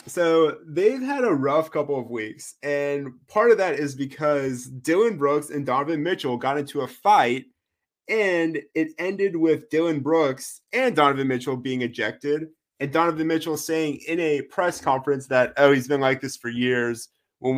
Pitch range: 140-165 Hz